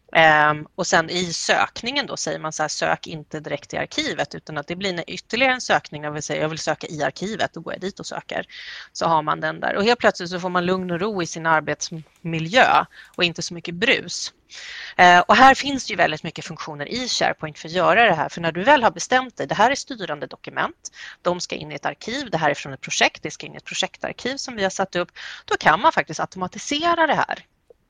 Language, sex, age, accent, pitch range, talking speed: Swedish, female, 30-49, native, 155-200 Hz, 245 wpm